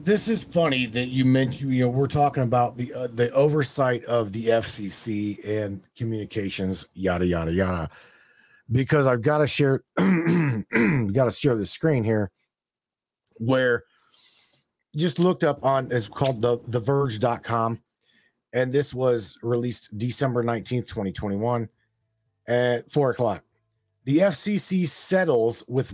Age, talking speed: 30-49, 140 wpm